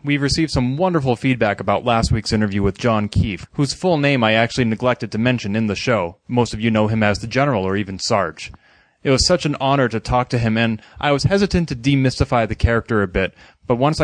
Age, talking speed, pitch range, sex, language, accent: 30-49, 235 wpm, 105-130 Hz, male, English, American